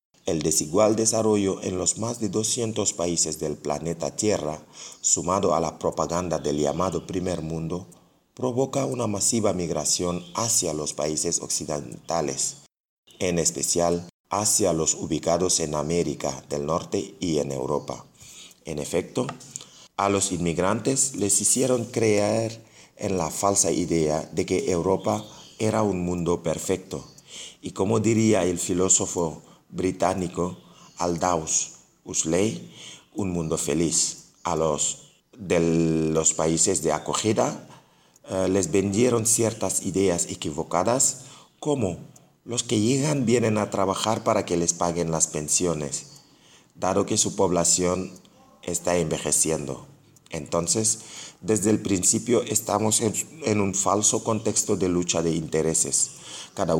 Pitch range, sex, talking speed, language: 85-110 Hz, male, 125 wpm, French